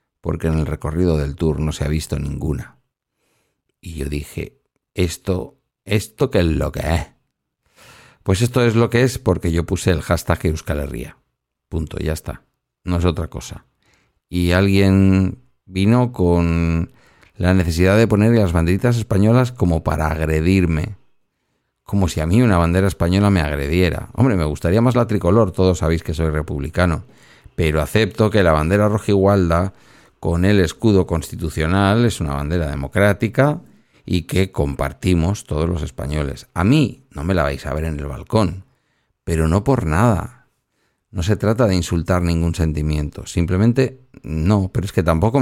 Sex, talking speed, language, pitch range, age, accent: male, 165 wpm, Spanish, 80-100 Hz, 50-69, Spanish